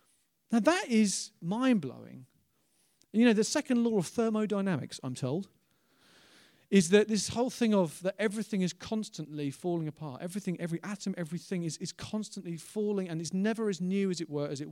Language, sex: English, male